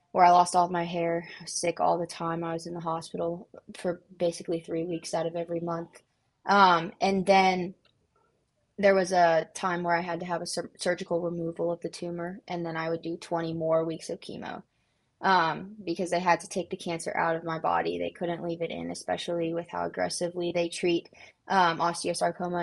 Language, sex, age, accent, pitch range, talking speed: English, female, 20-39, American, 170-190 Hz, 210 wpm